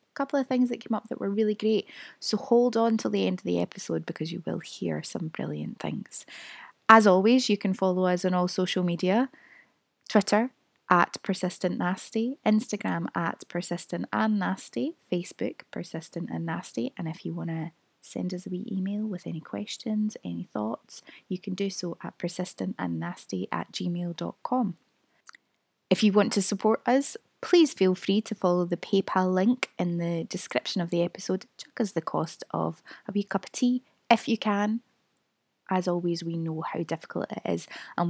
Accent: British